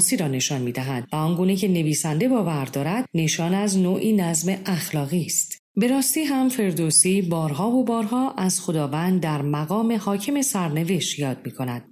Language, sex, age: Persian, female, 40-59